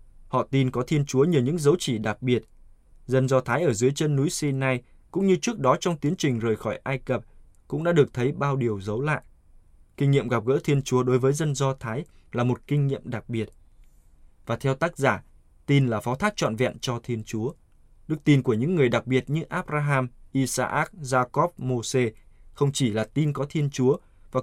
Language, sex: Vietnamese, male